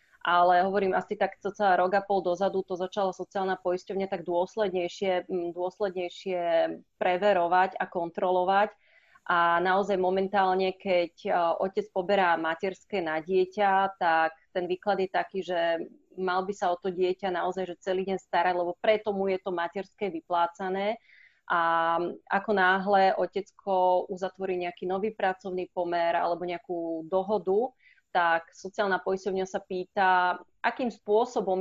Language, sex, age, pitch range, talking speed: Slovak, female, 30-49, 180-200 Hz, 135 wpm